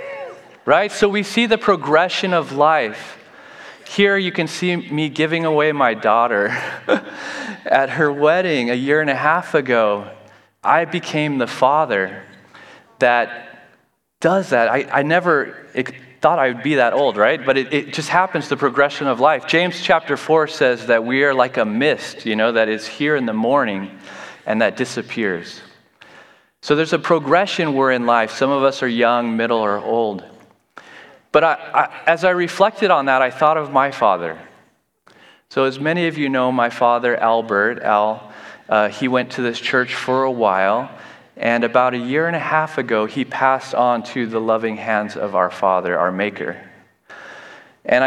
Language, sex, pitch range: English, male, 115-160 Hz